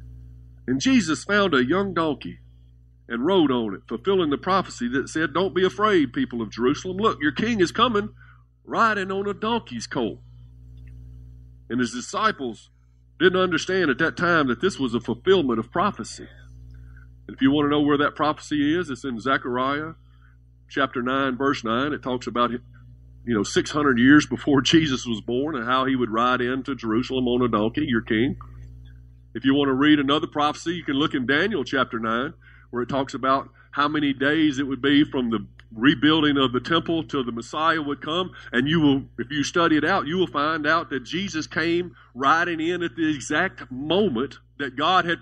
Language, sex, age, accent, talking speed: English, male, 50-69, American, 195 wpm